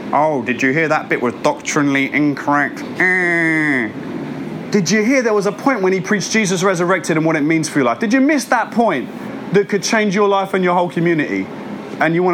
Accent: British